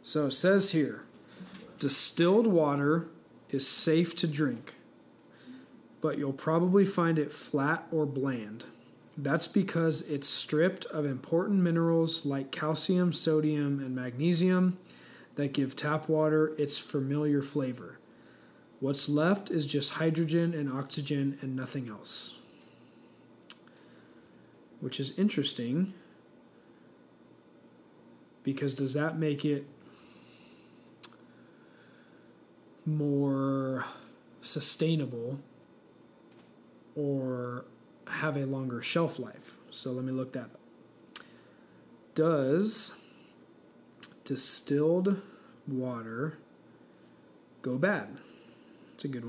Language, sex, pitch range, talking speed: English, male, 135-165 Hz, 95 wpm